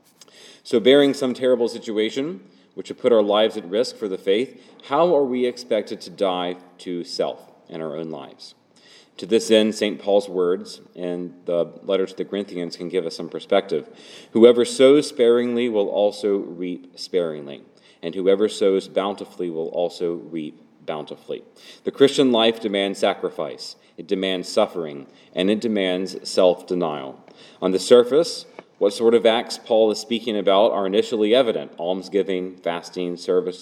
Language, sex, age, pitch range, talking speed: English, male, 30-49, 95-120 Hz, 155 wpm